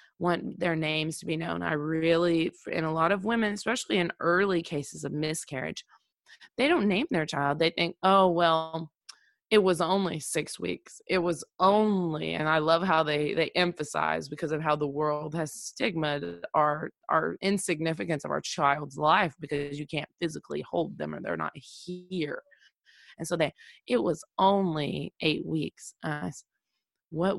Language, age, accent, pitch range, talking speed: English, 20-39, American, 145-175 Hz, 170 wpm